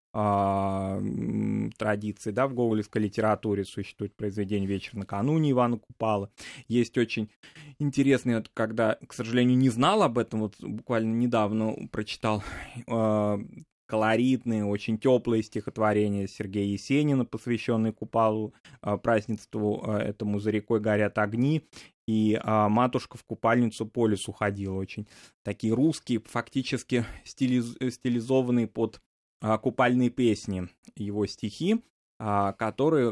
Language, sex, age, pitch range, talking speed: Russian, male, 20-39, 105-125 Hz, 105 wpm